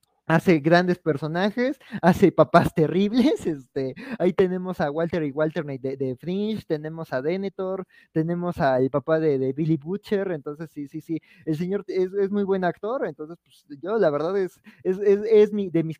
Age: 20-39